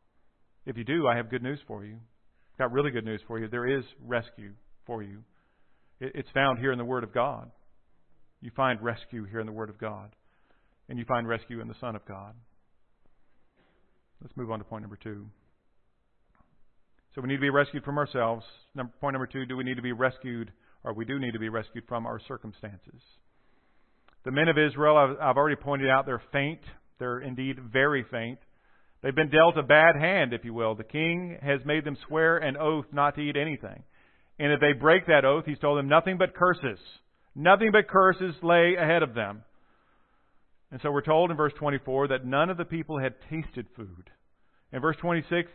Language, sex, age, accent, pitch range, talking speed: English, male, 40-59, American, 115-160 Hz, 205 wpm